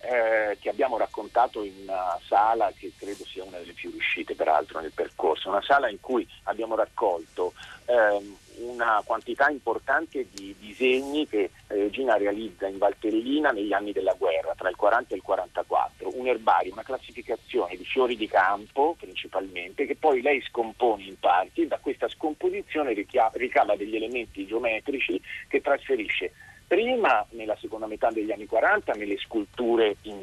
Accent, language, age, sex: native, Italian, 40-59, male